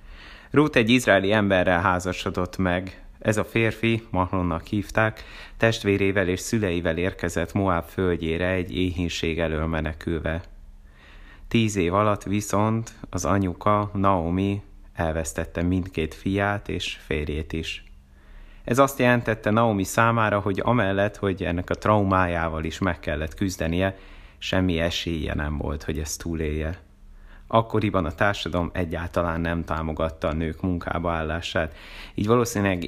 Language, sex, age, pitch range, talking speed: Hungarian, male, 30-49, 80-100 Hz, 125 wpm